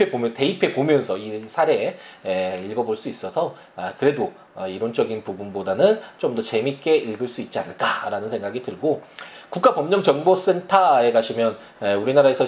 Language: Korean